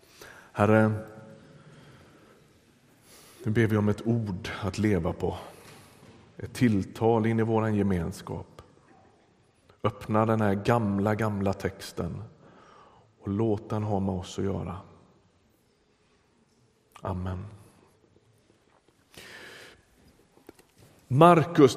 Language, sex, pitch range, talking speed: Swedish, male, 110-140 Hz, 90 wpm